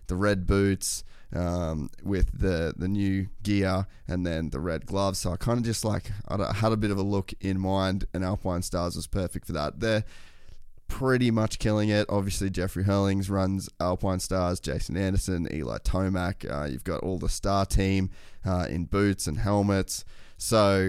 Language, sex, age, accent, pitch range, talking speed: English, male, 20-39, Australian, 85-100 Hz, 185 wpm